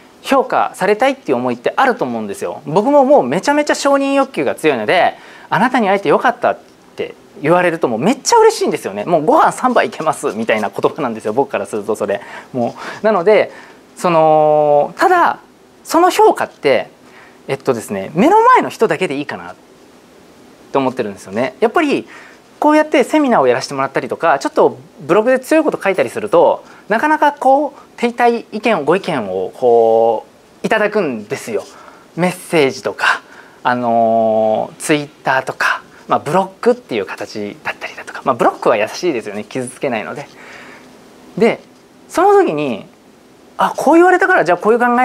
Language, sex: Japanese, male